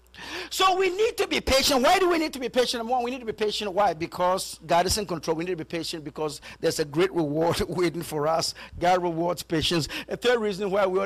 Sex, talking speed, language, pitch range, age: male, 255 wpm, English, 145-220 Hz, 50-69